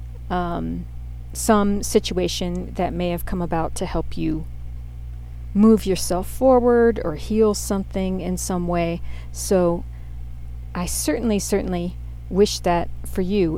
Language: English